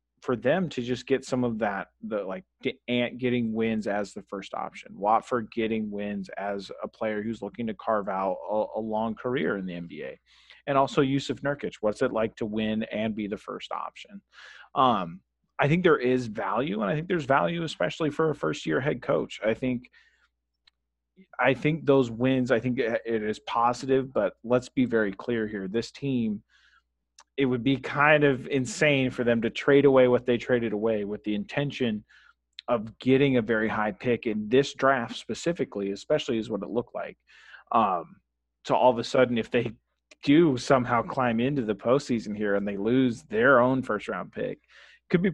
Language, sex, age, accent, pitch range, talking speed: English, male, 30-49, American, 110-135 Hz, 195 wpm